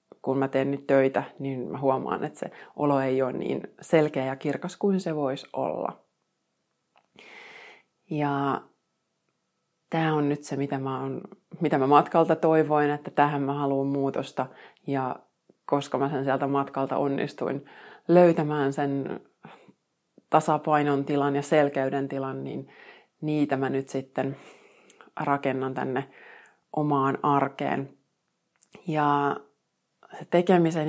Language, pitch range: Finnish, 140-160 Hz